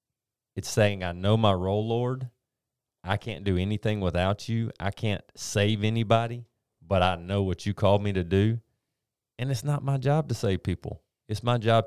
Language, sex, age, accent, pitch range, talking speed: English, male, 30-49, American, 85-110 Hz, 185 wpm